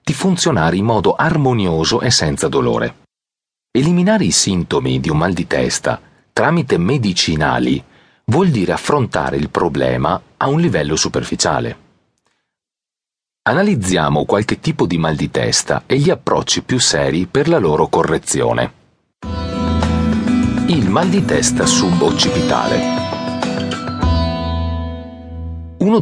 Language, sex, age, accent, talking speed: Italian, male, 40-59, native, 110 wpm